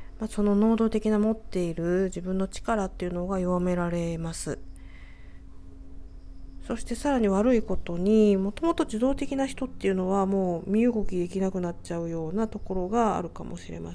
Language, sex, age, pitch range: Japanese, female, 40-59, 160-225 Hz